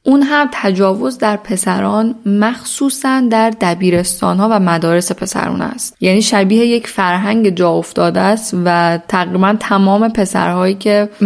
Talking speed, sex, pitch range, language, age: 130 wpm, female, 175-215 Hz, Persian, 10-29